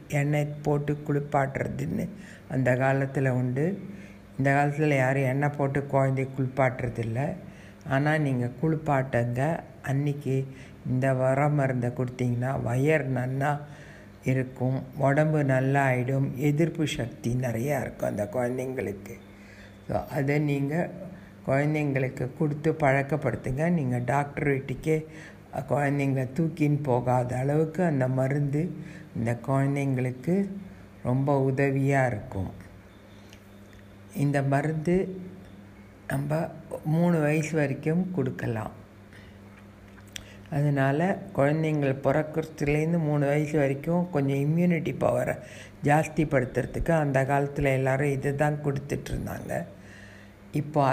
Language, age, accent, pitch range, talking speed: Tamil, 60-79, native, 125-150 Hz, 90 wpm